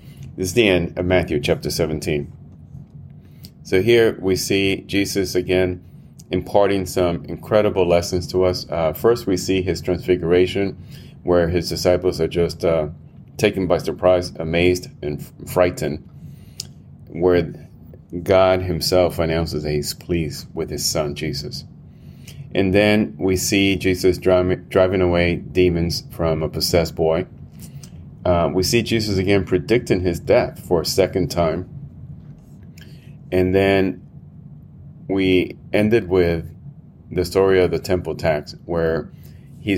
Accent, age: American, 30-49